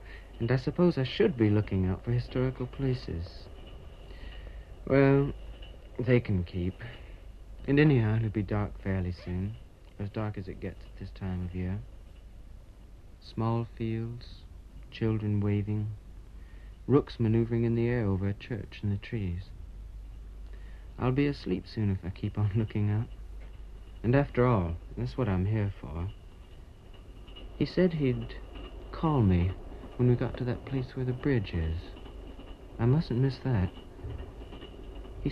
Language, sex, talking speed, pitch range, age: English, male, 145 wpm, 90-125 Hz, 60-79